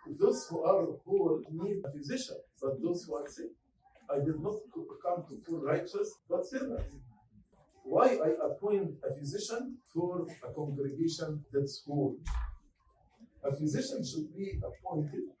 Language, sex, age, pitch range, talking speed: English, male, 50-69, 145-205 Hz, 140 wpm